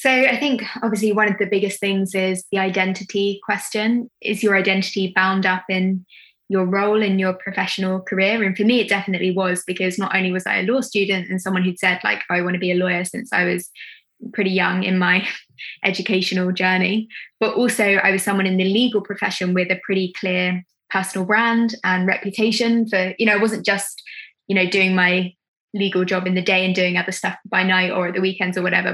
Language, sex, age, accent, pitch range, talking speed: English, female, 20-39, British, 185-210 Hz, 215 wpm